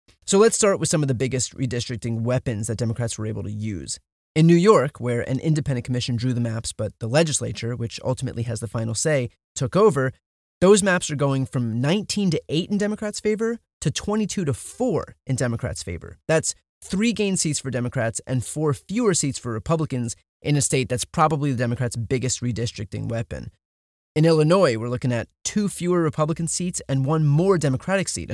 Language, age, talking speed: English, 30-49, 195 wpm